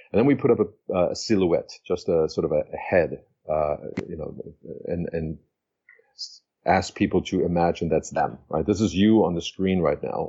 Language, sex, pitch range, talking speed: English, male, 85-110 Hz, 210 wpm